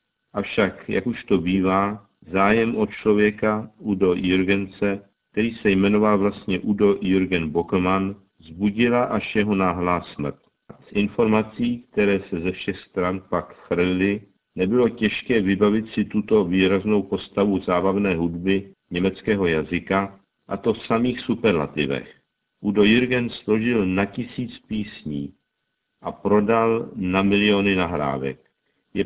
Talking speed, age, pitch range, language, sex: 120 wpm, 50-69, 95-110 Hz, Czech, male